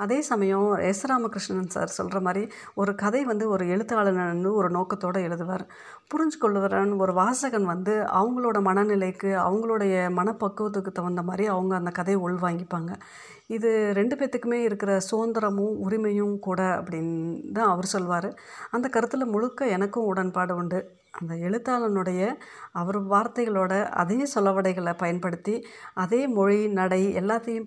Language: Tamil